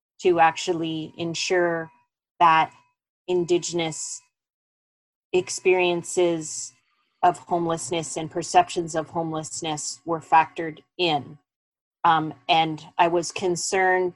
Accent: American